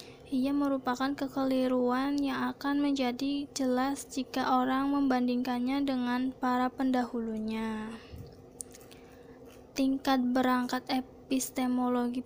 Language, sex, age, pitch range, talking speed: Indonesian, female, 20-39, 245-270 Hz, 80 wpm